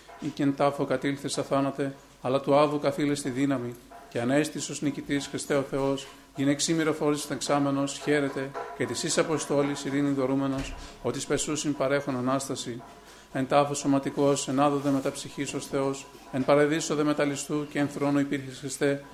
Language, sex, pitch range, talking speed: Greek, male, 135-145 Hz, 145 wpm